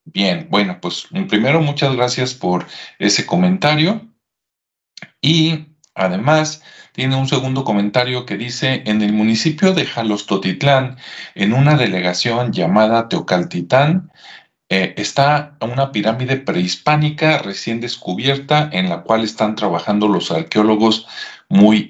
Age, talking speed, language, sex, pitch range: 40-59, 115 wpm, Spanish, male, 105-150 Hz